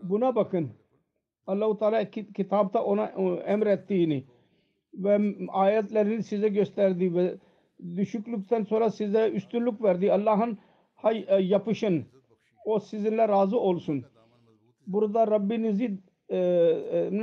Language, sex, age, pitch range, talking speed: Turkish, male, 60-79, 180-220 Hz, 90 wpm